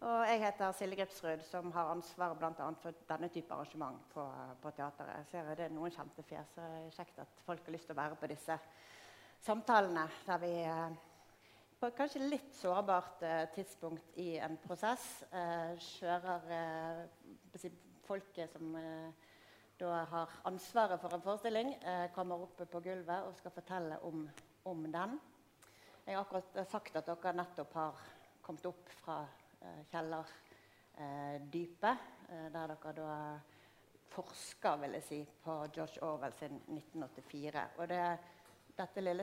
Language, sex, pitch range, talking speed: English, female, 160-190 Hz, 150 wpm